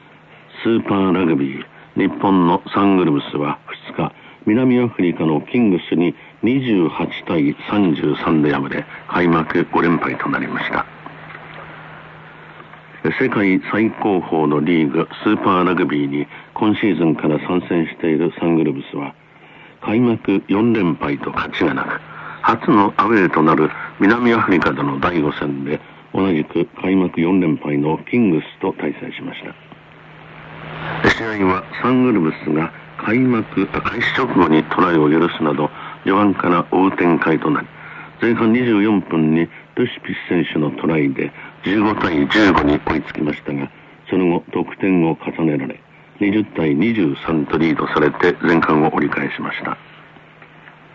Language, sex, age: Korean, male, 60-79